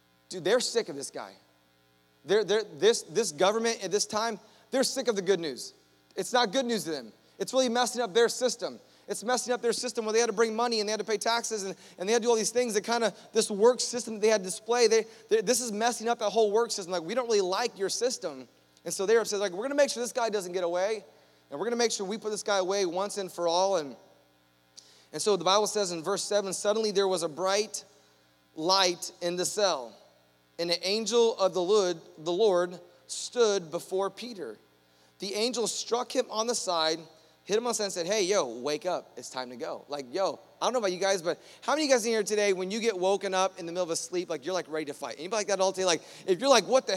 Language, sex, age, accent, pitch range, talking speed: English, male, 30-49, American, 175-225 Hz, 270 wpm